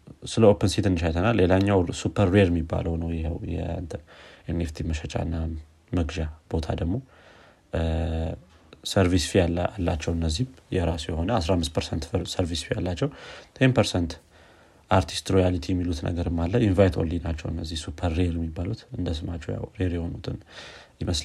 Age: 30-49